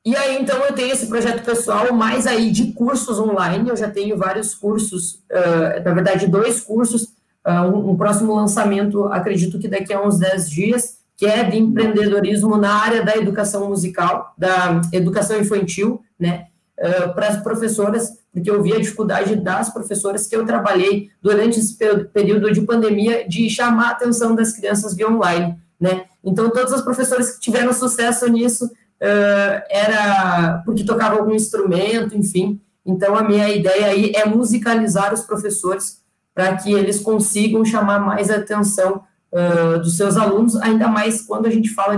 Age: 20-39